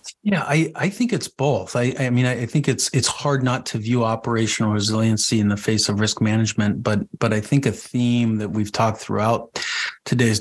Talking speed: 210 wpm